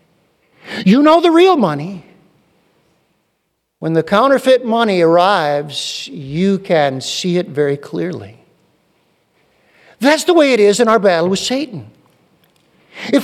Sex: male